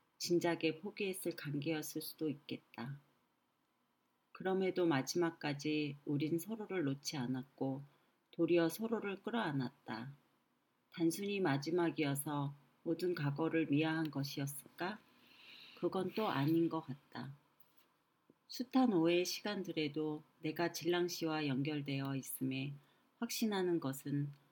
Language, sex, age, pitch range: Korean, female, 40-59, 140-175 Hz